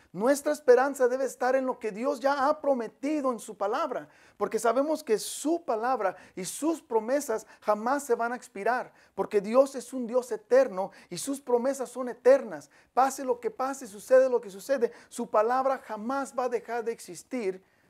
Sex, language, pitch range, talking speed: male, English, 215-270 Hz, 180 wpm